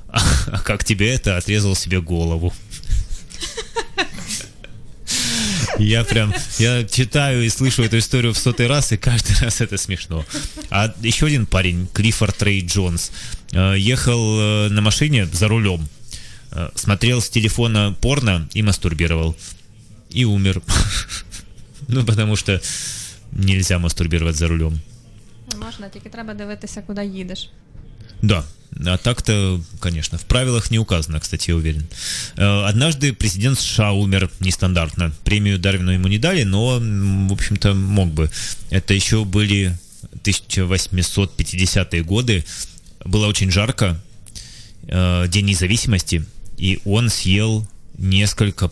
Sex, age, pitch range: male, 20-39, 90-115 Hz